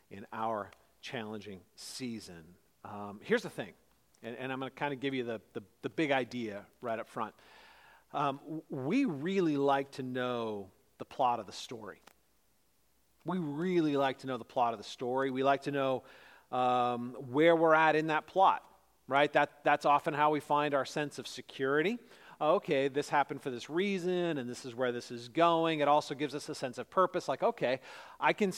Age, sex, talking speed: 40-59, male, 195 wpm